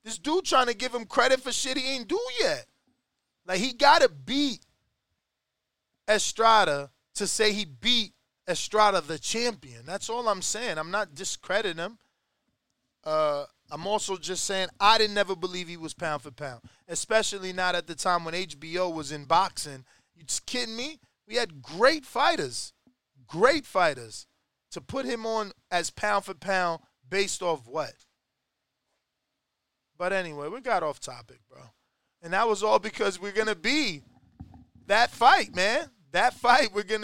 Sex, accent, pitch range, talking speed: male, American, 180-230 Hz, 165 wpm